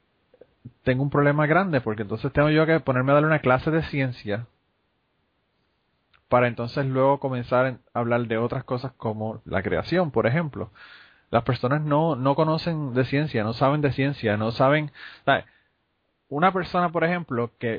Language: Spanish